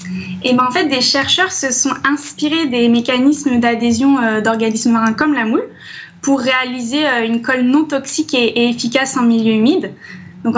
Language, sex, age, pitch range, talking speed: French, female, 10-29, 230-275 Hz, 180 wpm